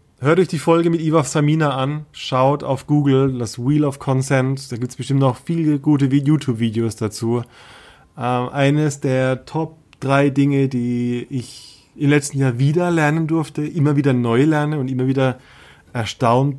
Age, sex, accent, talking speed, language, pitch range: 30-49, male, German, 165 wpm, German, 115-145 Hz